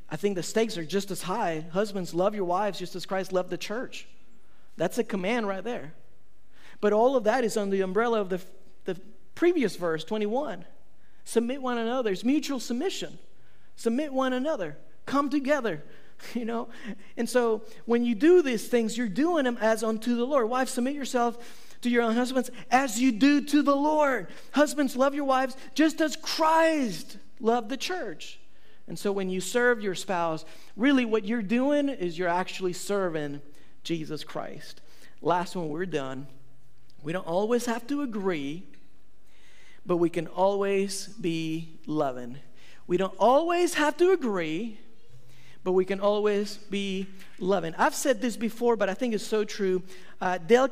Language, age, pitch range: English, 40-59, 185-255 Hz